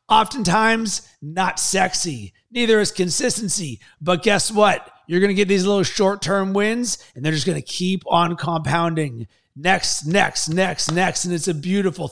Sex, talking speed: male, 165 wpm